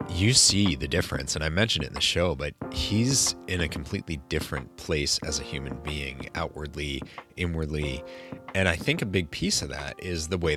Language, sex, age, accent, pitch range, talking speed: English, male, 30-49, American, 75-95 Hz, 200 wpm